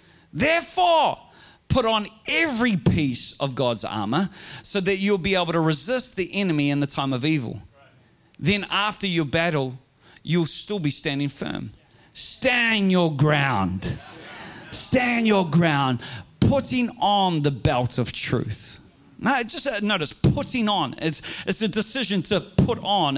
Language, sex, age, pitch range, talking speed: English, male, 40-59, 140-200 Hz, 140 wpm